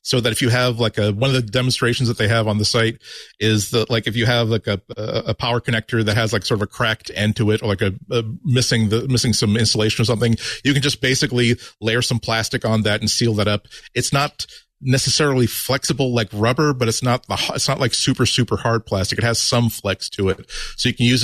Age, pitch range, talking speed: 40-59, 110-130 Hz, 250 wpm